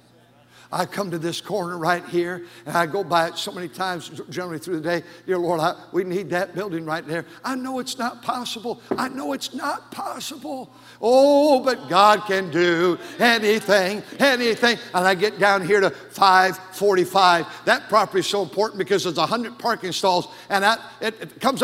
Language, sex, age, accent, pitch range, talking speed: English, male, 60-79, American, 190-290 Hz, 185 wpm